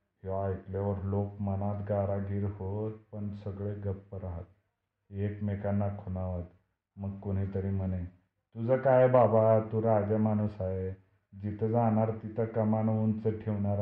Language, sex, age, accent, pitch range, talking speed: Marathi, male, 30-49, native, 95-110 Hz, 95 wpm